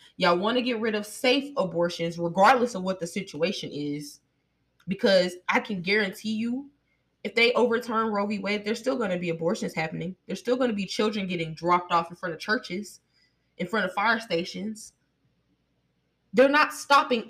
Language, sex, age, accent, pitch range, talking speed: English, female, 20-39, American, 170-255 Hz, 185 wpm